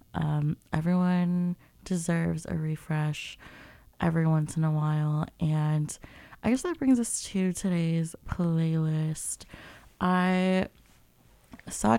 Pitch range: 155-180 Hz